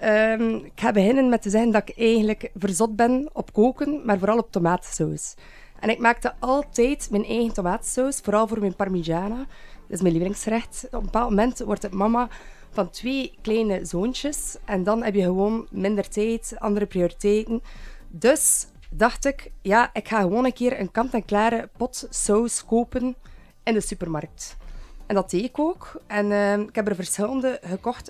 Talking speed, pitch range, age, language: 175 wpm, 195-235 Hz, 20-39, Dutch